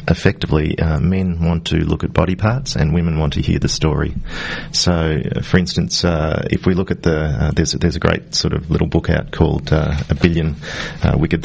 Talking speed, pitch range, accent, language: 210 wpm, 80-90 Hz, Australian, English